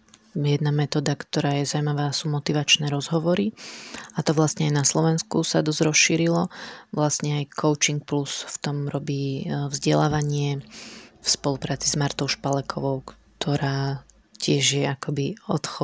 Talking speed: 135 wpm